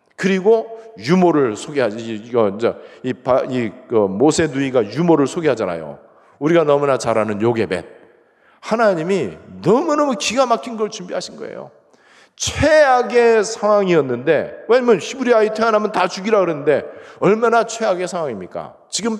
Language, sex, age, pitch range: Korean, male, 40-59, 165-235 Hz